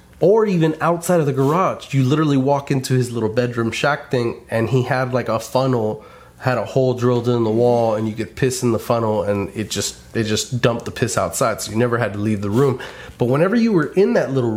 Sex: male